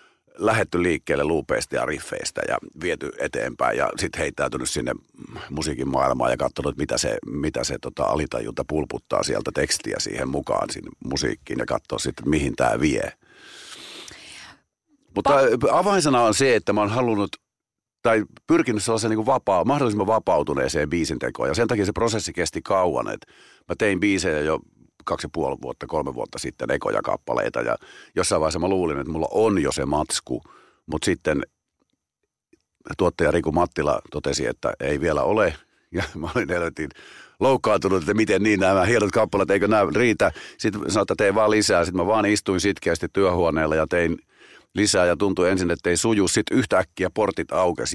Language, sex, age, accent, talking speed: Finnish, male, 50-69, native, 165 wpm